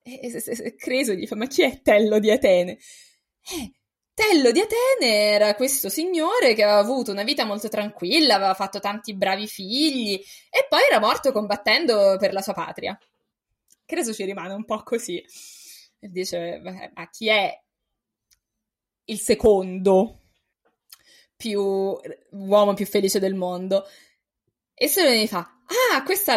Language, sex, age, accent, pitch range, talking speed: Italian, female, 20-39, native, 190-265 Hz, 150 wpm